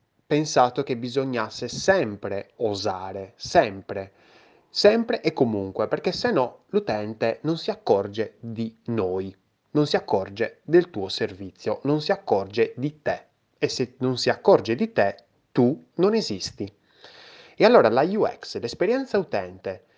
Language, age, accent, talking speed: Italian, 30-49, native, 135 wpm